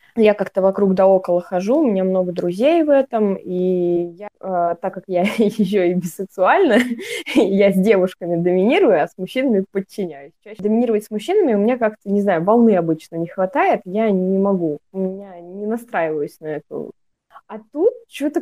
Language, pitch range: Russian, 180-220 Hz